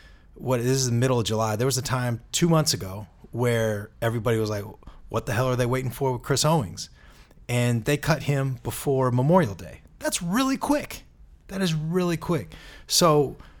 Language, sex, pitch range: English, male, 105-140 Hz